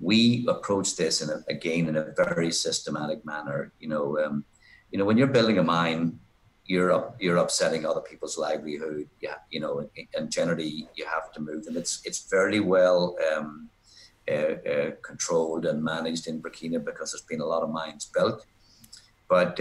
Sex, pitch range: male, 80-115 Hz